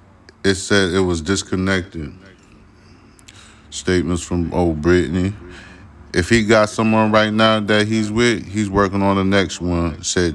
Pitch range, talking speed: 90-105 Hz, 145 wpm